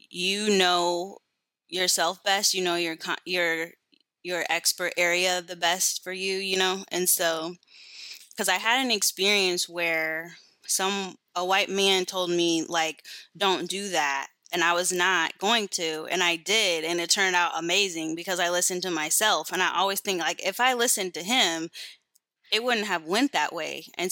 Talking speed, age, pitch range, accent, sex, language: 175 wpm, 20-39, 170-195 Hz, American, female, English